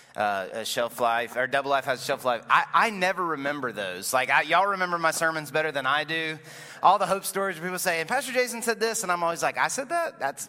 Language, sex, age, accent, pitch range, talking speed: English, male, 30-49, American, 140-175 Hz, 255 wpm